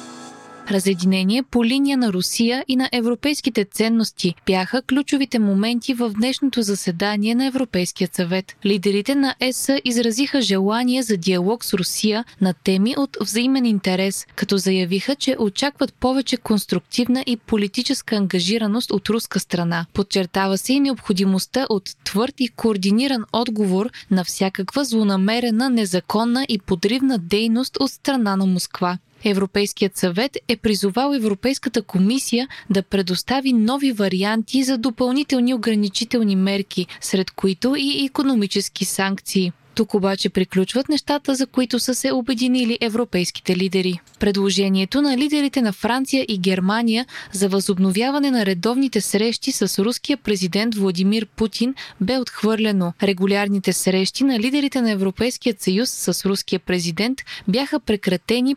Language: Bulgarian